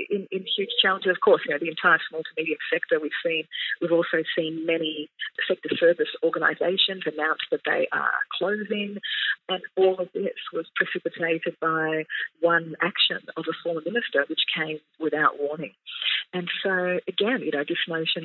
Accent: Australian